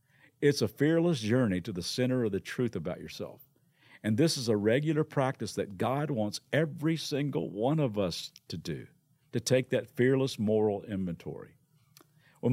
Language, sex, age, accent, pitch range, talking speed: English, male, 50-69, American, 120-155 Hz, 170 wpm